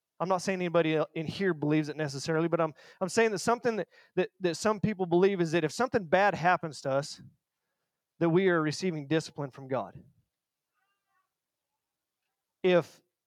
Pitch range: 150-185 Hz